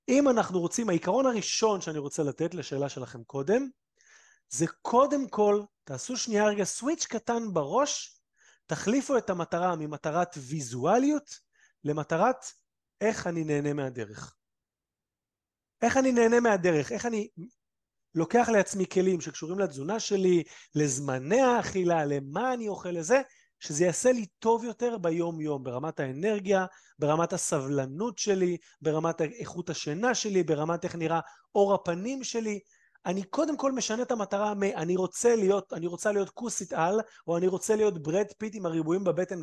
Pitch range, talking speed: 160-230 Hz, 140 wpm